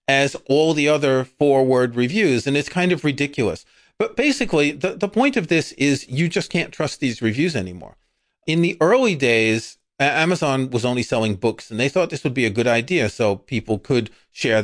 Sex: male